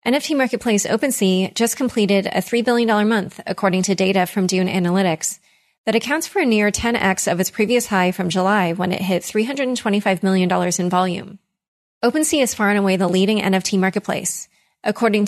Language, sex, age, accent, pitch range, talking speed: English, female, 30-49, American, 190-225 Hz, 175 wpm